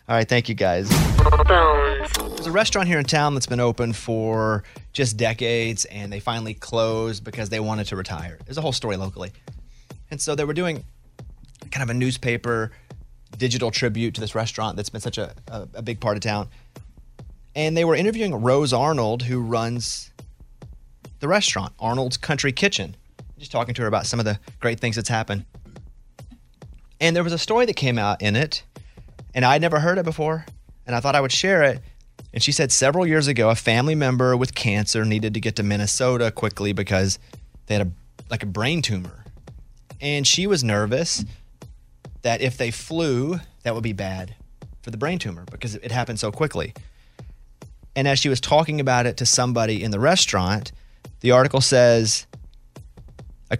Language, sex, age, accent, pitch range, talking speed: English, male, 30-49, American, 105-135 Hz, 185 wpm